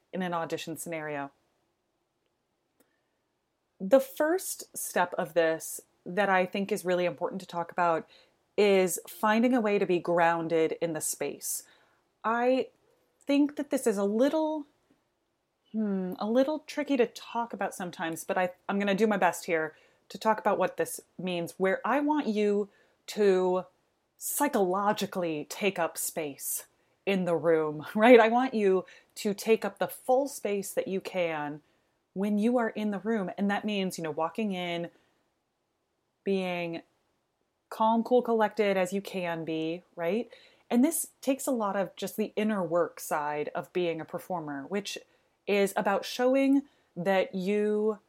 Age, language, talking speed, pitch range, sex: 30-49, English, 150 wpm, 175-245 Hz, female